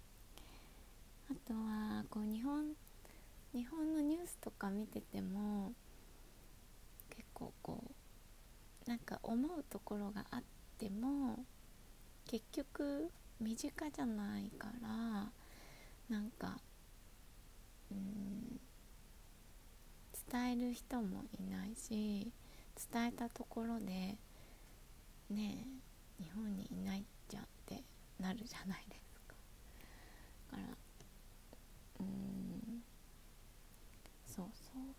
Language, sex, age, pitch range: Japanese, female, 20-39, 195-240 Hz